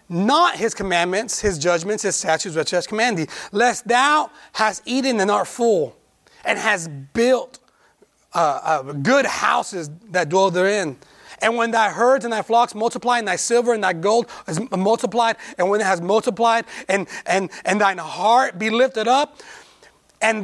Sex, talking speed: male, 175 wpm